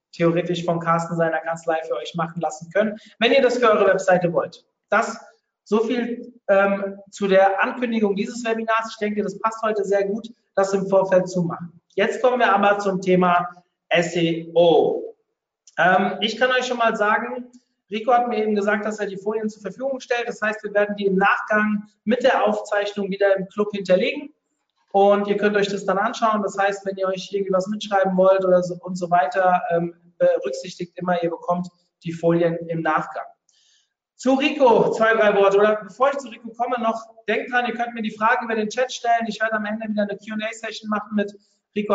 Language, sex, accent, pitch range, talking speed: German, male, German, 185-225 Hz, 195 wpm